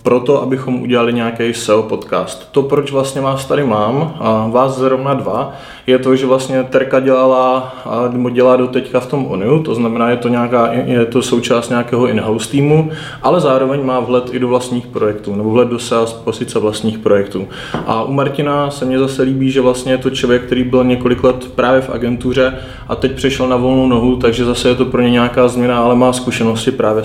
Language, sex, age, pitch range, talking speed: Czech, male, 20-39, 125-135 Hz, 200 wpm